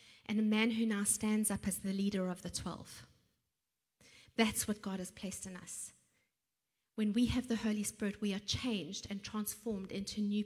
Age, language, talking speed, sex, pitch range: 30-49, English, 190 wpm, female, 205-235 Hz